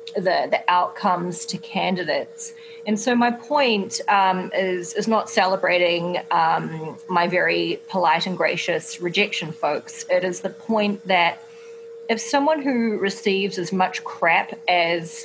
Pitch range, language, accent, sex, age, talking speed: 175-230 Hz, English, Australian, female, 30-49, 140 wpm